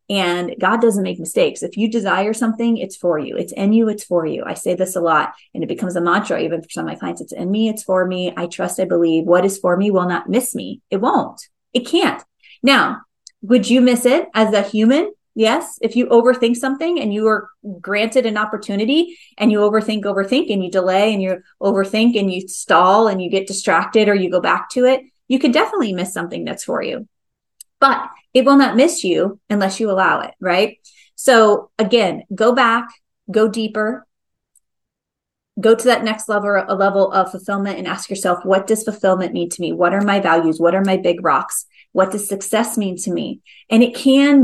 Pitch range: 190-235 Hz